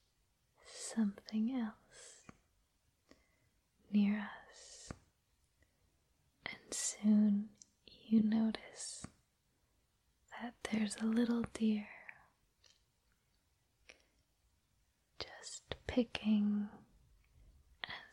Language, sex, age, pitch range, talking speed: English, female, 20-39, 205-230 Hz, 50 wpm